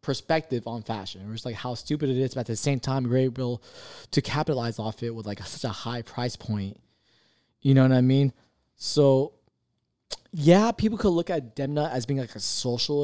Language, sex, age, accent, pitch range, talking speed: English, male, 20-39, American, 125-150 Hz, 210 wpm